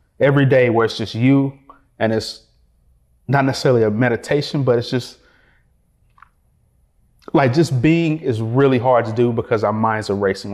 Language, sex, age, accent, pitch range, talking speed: English, male, 30-49, American, 110-140 Hz, 160 wpm